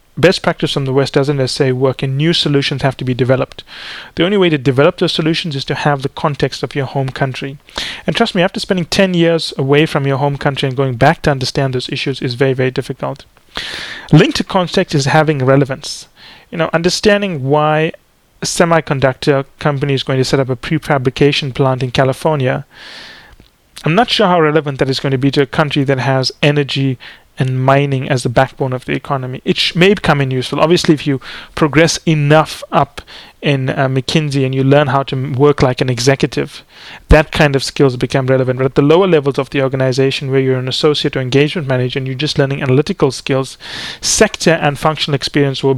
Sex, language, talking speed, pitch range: male, English, 205 wpm, 135-155 Hz